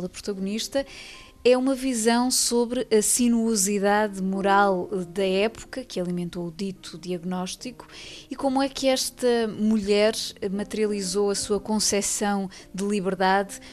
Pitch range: 185-220 Hz